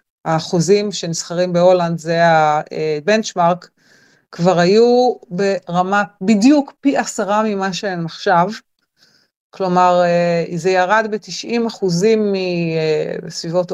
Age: 30-49